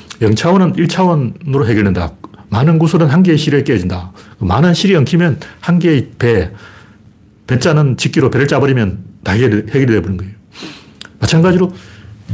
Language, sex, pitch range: Korean, male, 105-160 Hz